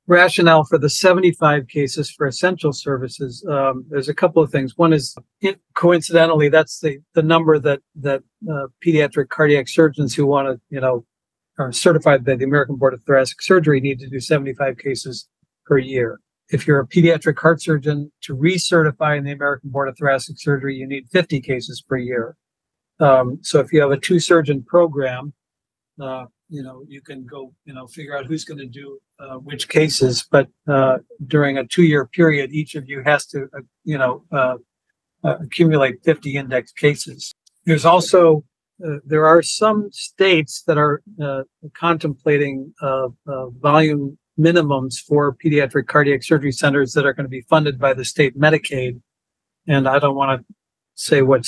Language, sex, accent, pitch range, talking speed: English, male, American, 135-155 Hz, 175 wpm